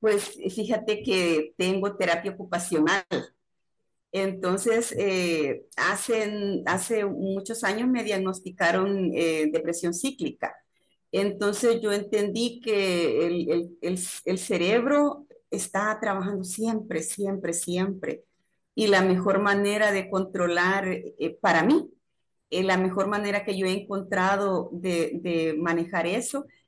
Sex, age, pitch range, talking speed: female, 40-59, 180-205 Hz, 115 wpm